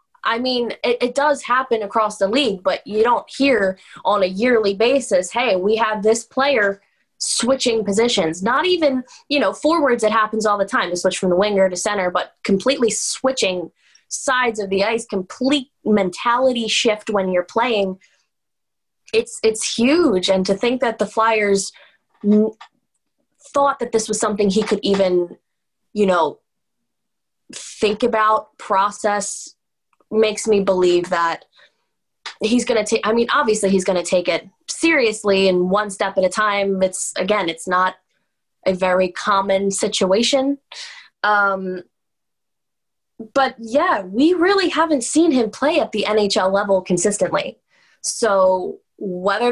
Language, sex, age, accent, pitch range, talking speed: English, female, 20-39, American, 200-265 Hz, 150 wpm